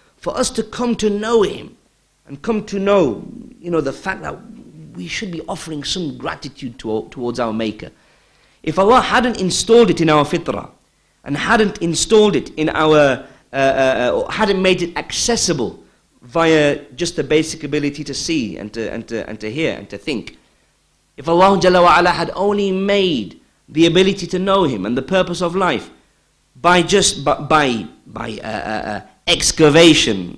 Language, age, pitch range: English, 50-69, 135-190 Hz